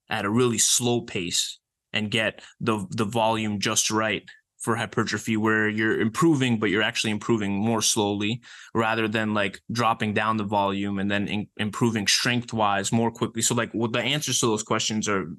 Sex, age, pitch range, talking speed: male, 20-39, 100-115 Hz, 185 wpm